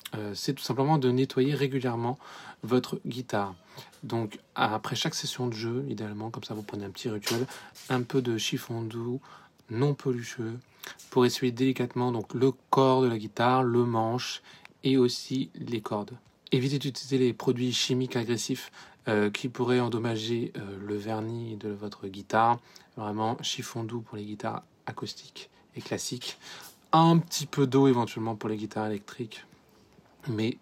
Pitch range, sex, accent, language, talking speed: 110-125 Hz, male, French, French, 155 wpm